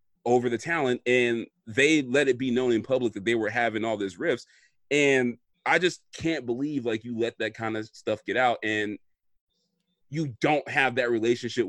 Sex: male